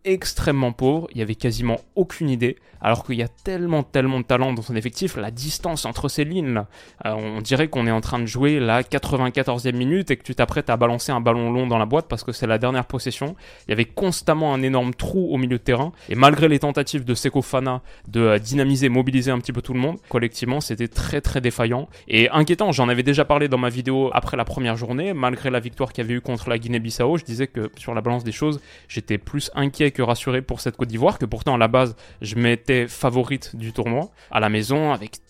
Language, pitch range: French, 115-140 Hz